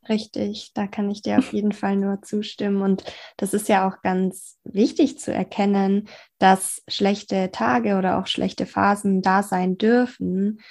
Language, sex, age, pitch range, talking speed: German, female, 20-39, 190-210 Hz, 160 wpm